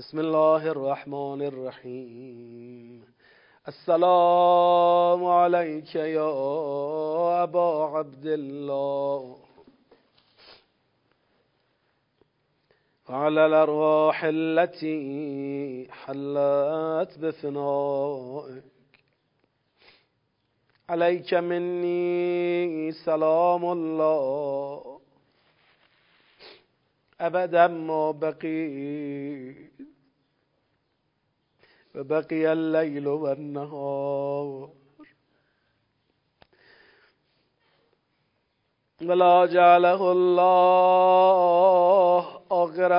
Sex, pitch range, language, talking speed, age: male, 140-175 Hz, Persian, 40 wpm, 40-59